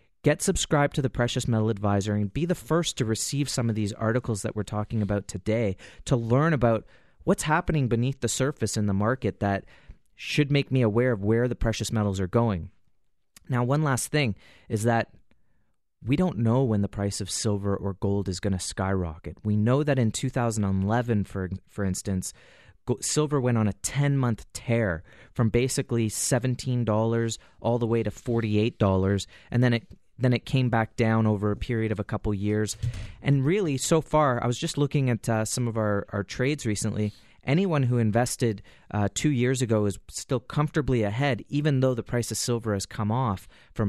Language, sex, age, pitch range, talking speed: English, male, 30-49, 100-130 Hz, 190 wpm